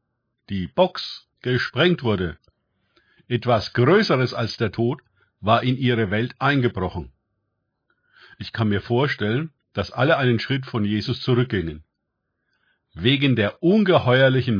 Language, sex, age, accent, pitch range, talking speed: German, male, 50-69, German, 110-135 Hz, 115 wpm